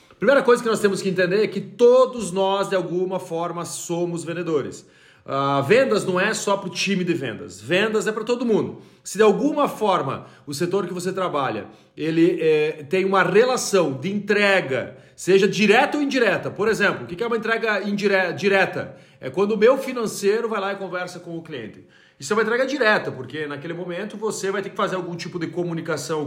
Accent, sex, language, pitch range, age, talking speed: Brazilian, male, Portuguese, 170-210 Hz, 40-59, 195 wpm